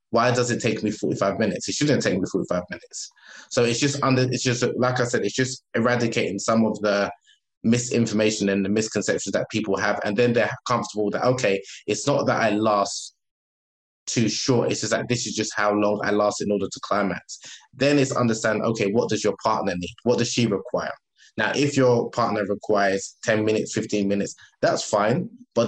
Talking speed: 205 wpm